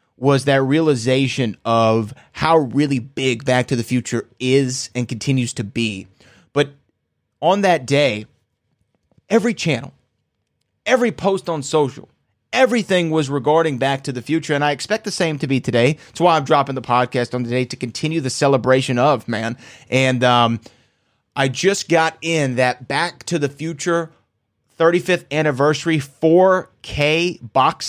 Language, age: English, 30-49